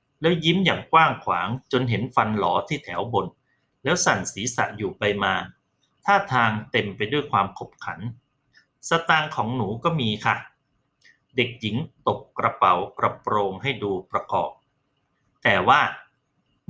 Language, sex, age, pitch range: Thai, male, 30-49, 110-160 Hz